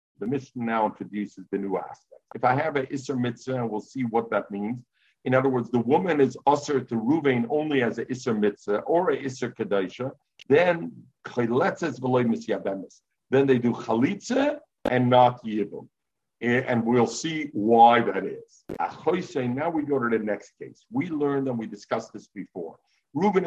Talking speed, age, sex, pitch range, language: 165 wpm, 50-69, male, 115-175 Hz, English